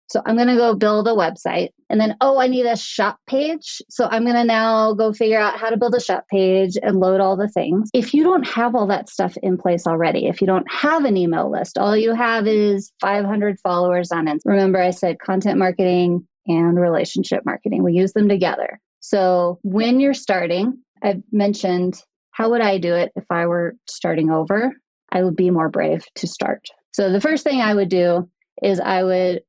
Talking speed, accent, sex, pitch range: 215 wpm, American, female, 180-235 Hz